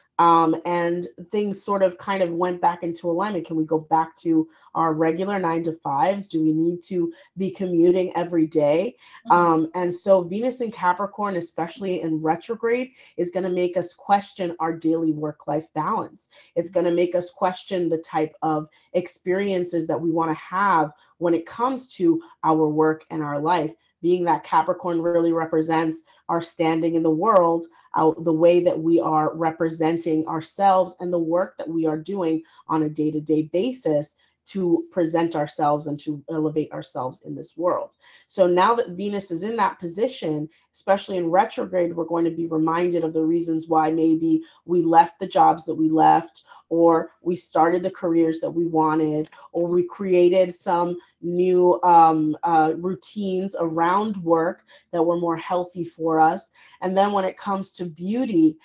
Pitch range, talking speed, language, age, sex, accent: 160-185 Hz, 175 wpm, English, 30-49, female, American